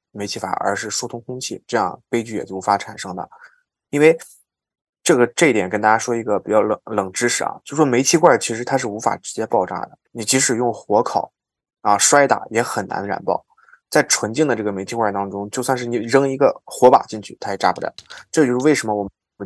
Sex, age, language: male, 20-39, Chinese